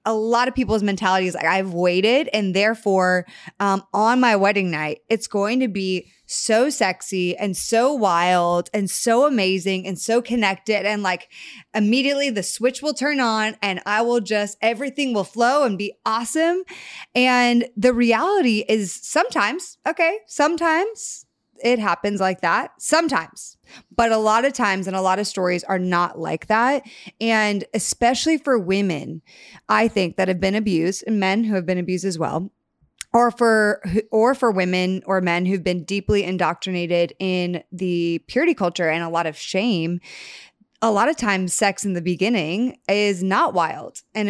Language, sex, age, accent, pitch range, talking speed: English, female, 20-39, American, 185-235 Hz, 170 wpm